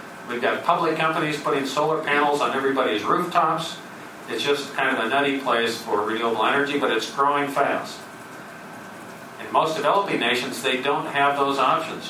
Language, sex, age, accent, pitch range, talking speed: English, male, 40-59, American, 120-145 Hz, 165 wpm